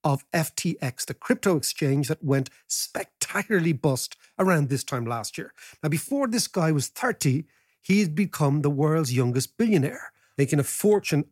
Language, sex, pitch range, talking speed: English, male, 140-185 Hz, 160 wpm